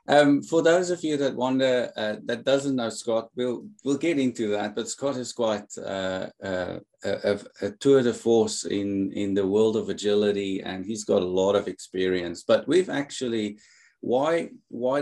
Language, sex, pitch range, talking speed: English, male, 95-115 Hz, 185 wpm